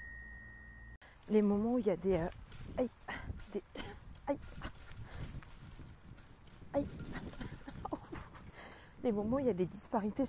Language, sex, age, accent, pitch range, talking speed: French, female, 30-49, French, 190-240 Hz, 110 wpm